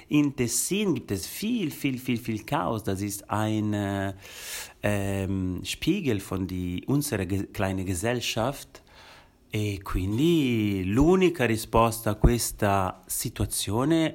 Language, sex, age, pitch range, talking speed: Italian, male, 30-49, 100-130 Hz, 100 wpm